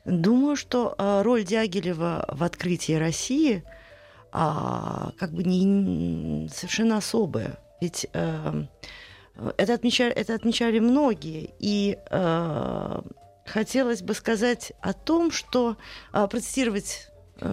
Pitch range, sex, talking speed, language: 165-235 Hz, female, 105 wpm, Russian